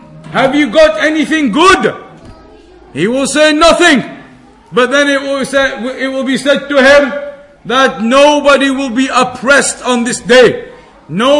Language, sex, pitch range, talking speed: English, male, 250-280 Hz, 155 wpm